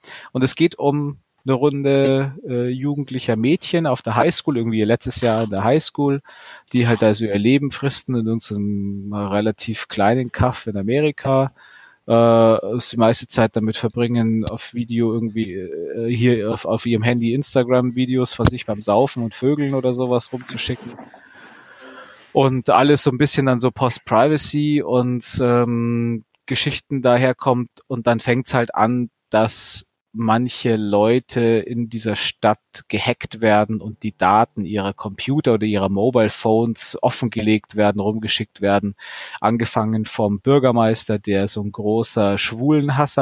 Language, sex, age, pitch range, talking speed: German, male, 30-49, 105-125 Hz, 145 wpm